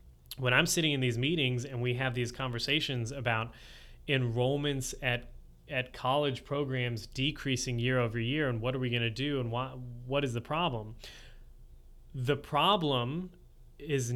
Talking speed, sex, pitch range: 155 wpm, male, 120-145 Hz